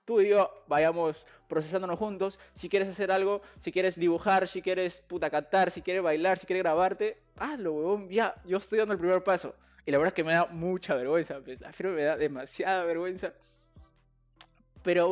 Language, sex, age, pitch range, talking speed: Spanish, male, 20-39, 155-205 Hz, 185 wpm